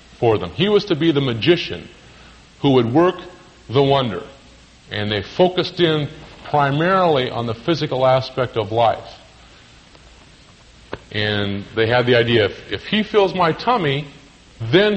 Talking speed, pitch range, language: 140 wpm, 105-150 Hz, English